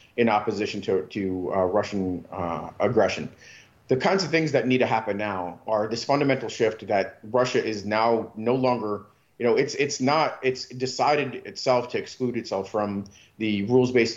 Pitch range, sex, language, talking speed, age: 105-120 Hz, male, English, 180 wpm, 30-49